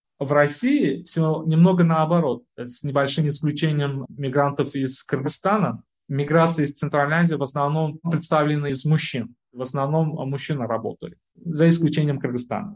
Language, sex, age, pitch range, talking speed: Russian, male, 20-39, 130-165 Hz, 125 wpm